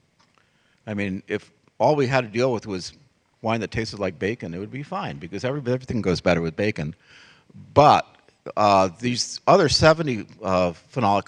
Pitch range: 100-135 Hz